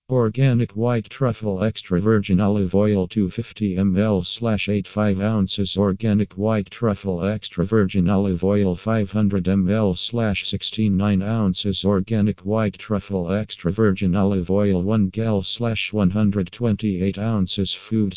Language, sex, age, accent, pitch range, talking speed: English, male, 50-69, American, 95-110 Hz, 95 wpm